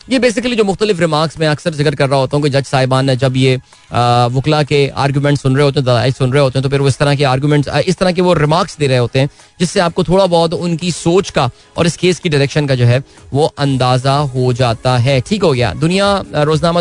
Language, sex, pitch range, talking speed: Hindi, male, 135-170 Hz, 245 wpm